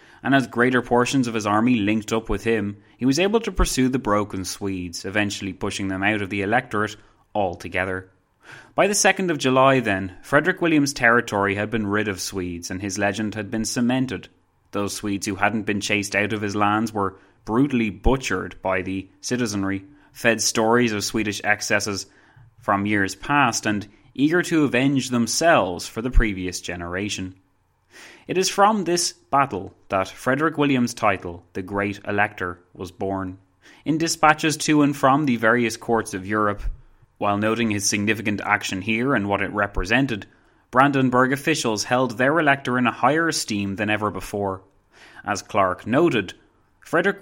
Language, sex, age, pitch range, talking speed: English, male, 20-39, 100-125 Hz, 165 wpm